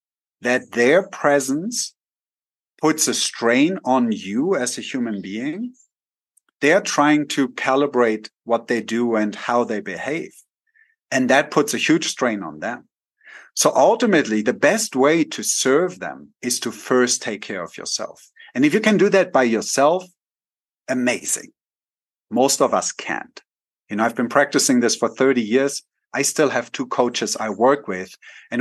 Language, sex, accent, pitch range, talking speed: English, male, German, 115-170 Hz, 160 wpm